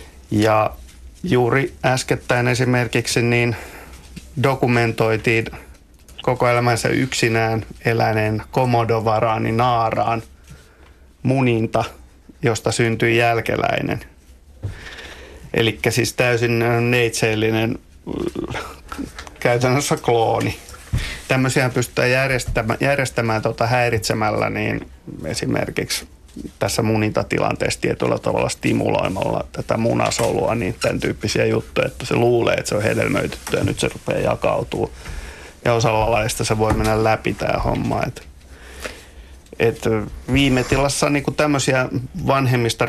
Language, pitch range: Finnish, 105-125 Hz